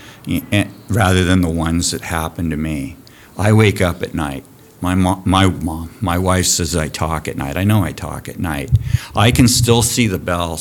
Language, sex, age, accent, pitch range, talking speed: English, male, 50-69, American, 80-100 Hz, 205 wpm